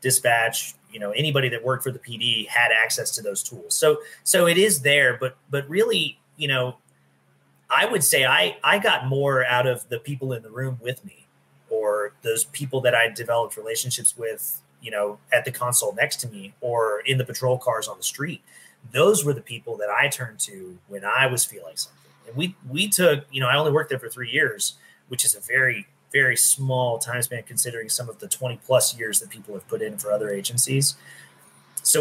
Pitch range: 115-150 Hz